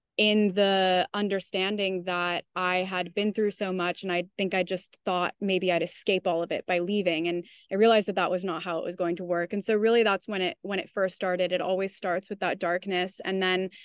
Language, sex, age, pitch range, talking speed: English, female, 20-39, 185-205 Hz, 240 wpm